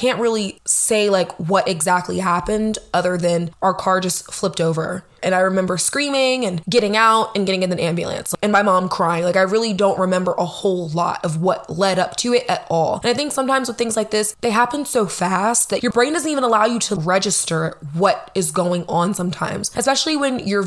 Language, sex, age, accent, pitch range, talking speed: English, female, 20-39, American, 180-225 Hz, 220 wpm